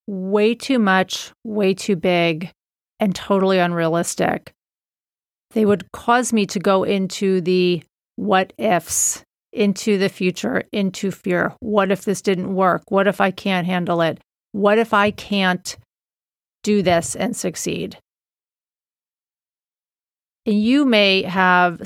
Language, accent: English, American